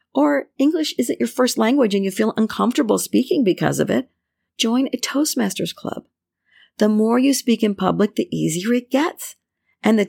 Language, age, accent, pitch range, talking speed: English, 50-69, American, 165-240 Hz, 180 wpm